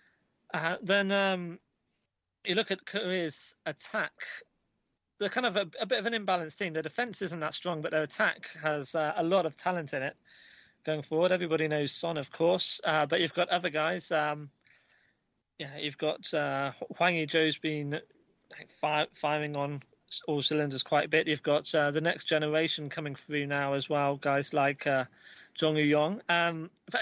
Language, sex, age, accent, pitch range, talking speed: English, male, 20-39, British, 145-180 Hz, 180 wpm